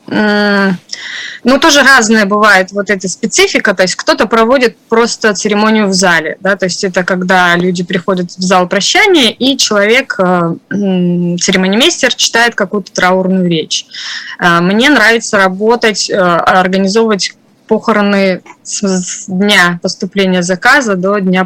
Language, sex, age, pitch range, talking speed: Russian, female, 20-39, 180-225 Hz, 120 wpm